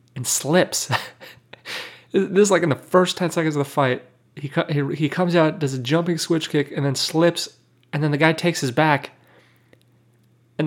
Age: 20-39